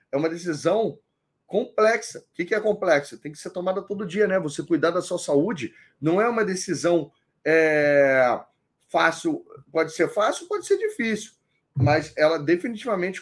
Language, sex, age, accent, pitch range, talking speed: Portuguese, male, 30-49, Brazilian, 160-220 Hz, 155 wpm